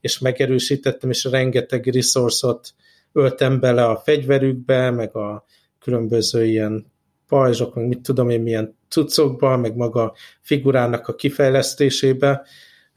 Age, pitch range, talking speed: 60-79, 120-140 Hz, 115 wpm